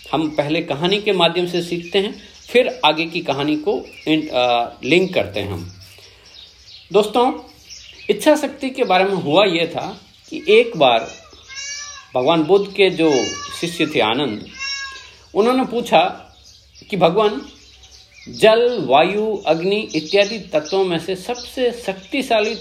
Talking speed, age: 135 wpm, 50-69